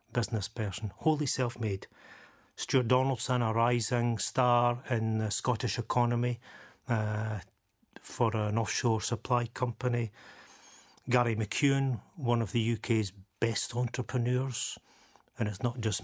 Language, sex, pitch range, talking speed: English, male, 110-125 Hz, 115 wpm